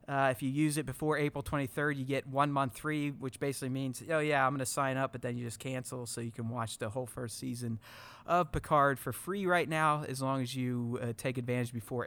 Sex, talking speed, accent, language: male, 250 wpm, American, English